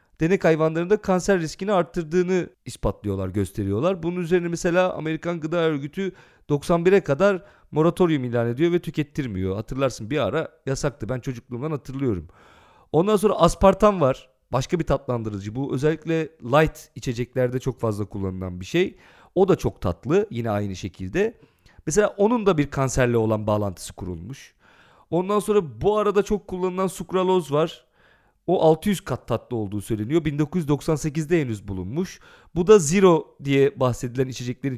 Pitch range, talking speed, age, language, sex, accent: 125-190 Hz, 140 wpm, 40-59, Turkish, male, native